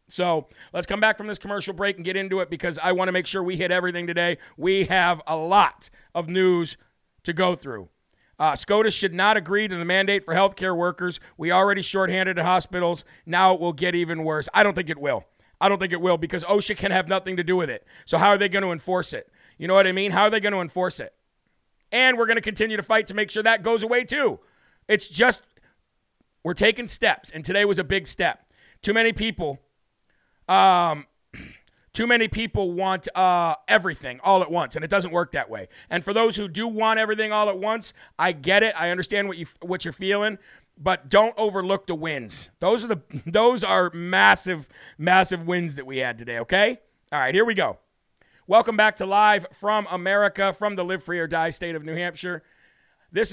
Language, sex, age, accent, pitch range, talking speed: English, male, 40-59, American, 175-205 Hz, 220 wpm